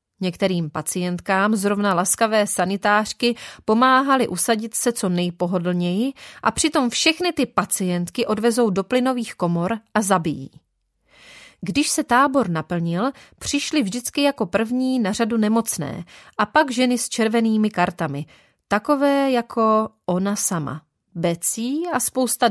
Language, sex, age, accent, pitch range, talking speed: Czech, female, 30-49, native, 190-265 Hz, 120 wpm